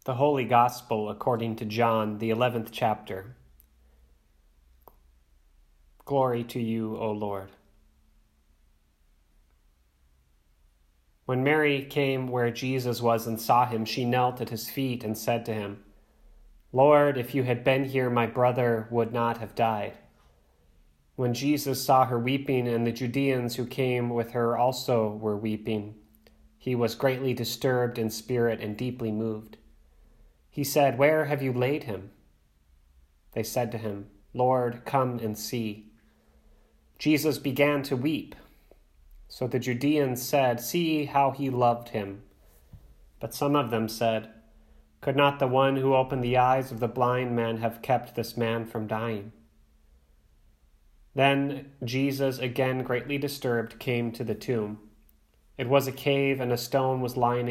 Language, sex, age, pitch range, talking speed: English, male, 30-49, 105-130 Hz, 145 wpm